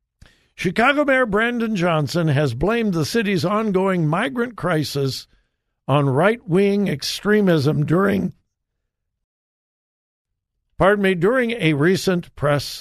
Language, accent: English, American